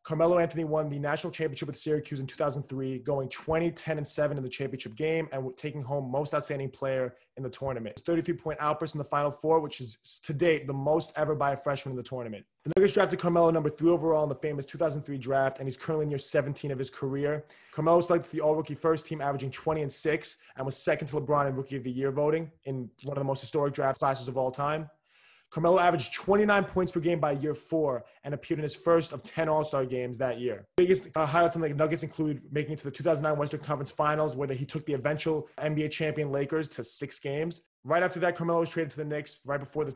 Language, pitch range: English, 135-160 Hz